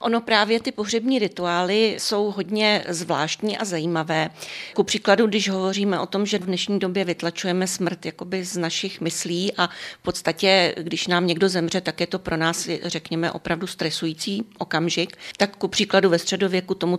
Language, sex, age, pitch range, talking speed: Czech, female, 40-59, 170-195 Hz, 170 wpm